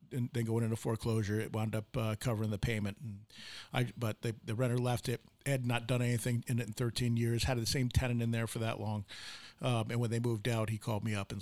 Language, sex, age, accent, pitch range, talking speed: English, male, 50-69, American, 110-125 Hz, 255 wpm